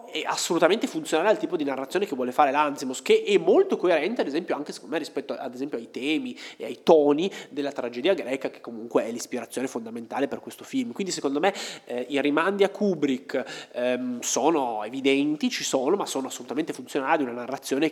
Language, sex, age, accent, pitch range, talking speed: Italian, male, 20-39, native, 125-170 Hz, 195 wpm